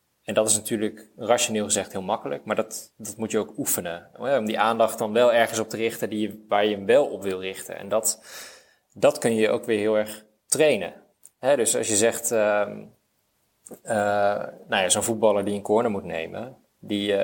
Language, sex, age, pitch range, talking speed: Dutch, male, 20-39, 105-115 Hz, 190 wpm